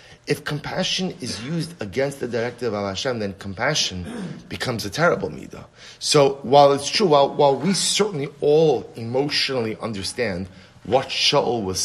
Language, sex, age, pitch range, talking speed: English, male, 30-49, 100-145 Hz, 145 wpm